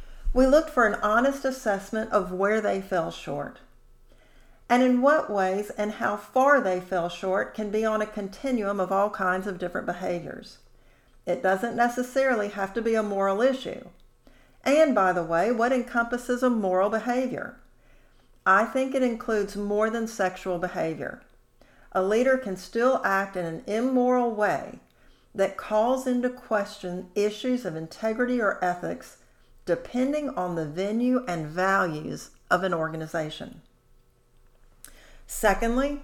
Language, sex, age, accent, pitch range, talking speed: English, female, 50-69, American, 180-245 Hz, 145 wpm